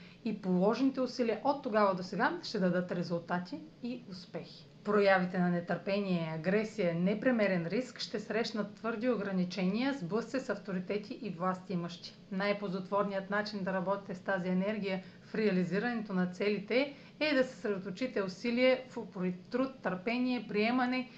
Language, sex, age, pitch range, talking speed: Bulgarian, female, 40-59, 185-225 Hz, 135 wpm